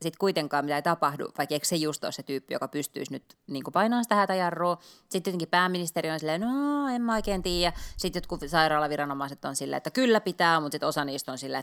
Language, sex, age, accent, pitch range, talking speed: Finnish, female, 20-39, native, 145-190 Hz, 215 wpm